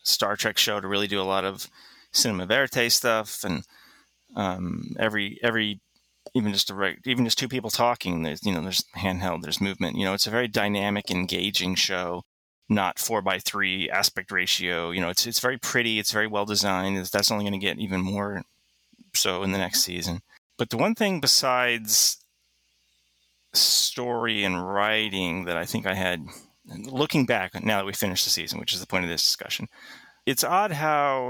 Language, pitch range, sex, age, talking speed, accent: English, 95-125 Hz, male, 30-49, 185 wpm, American